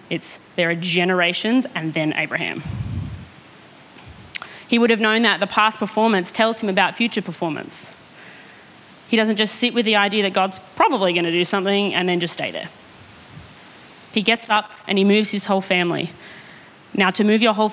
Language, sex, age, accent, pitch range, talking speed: English, female, 30-49, Australian, 170-200 Hz, 175 wpm